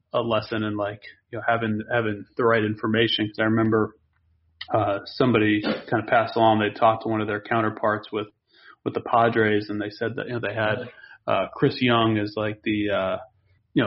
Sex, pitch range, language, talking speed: male, 105-125 Hz, English, 205 wpm